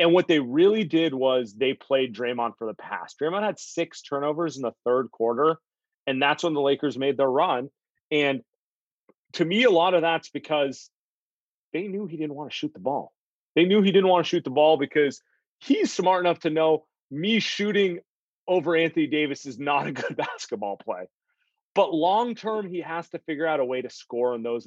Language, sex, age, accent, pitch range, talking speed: English, male, 30-49, American, 130-175 Hz, 205 wpm